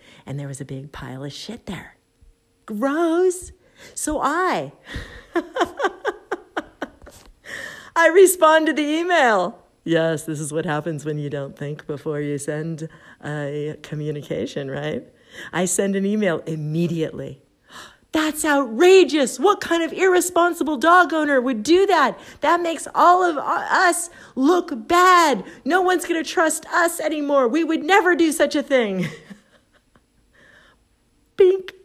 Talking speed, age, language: 130 wpm, 50-69, English